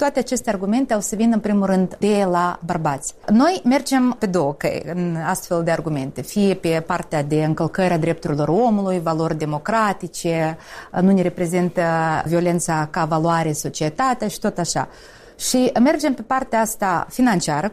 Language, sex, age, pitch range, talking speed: Romanian, female, 30-49, 175-220 Hz, 160 wpm